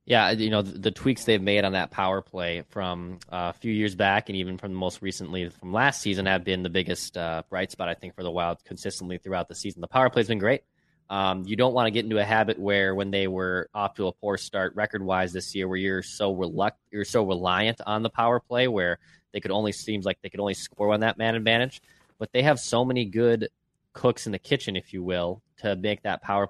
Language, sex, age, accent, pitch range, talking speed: English, male, 20-39, American, 95-115 Hz, 250 wpm